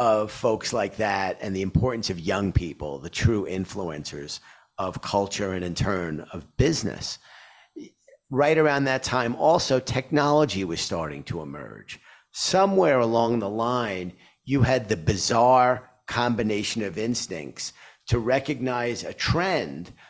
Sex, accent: male, American